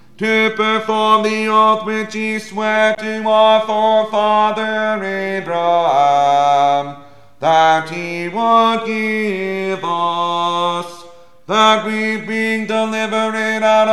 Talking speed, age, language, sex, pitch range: 90 wpm, 30-49, English, male, 160-215 Hz